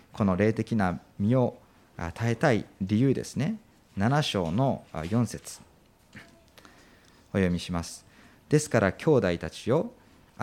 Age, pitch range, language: 40-59, 105-150 Hz, Japanese